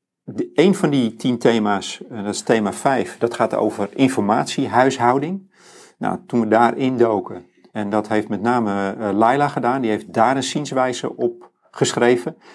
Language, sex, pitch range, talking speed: Dutch, male, 105-125 Hz, 165 wpm